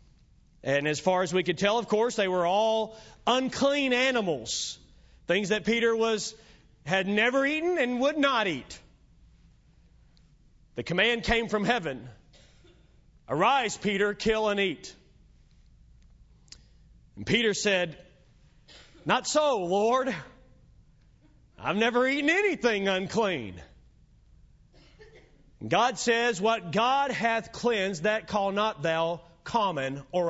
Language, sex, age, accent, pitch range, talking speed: English, male, 40-59, American, 165-225 Hz, 115 wpm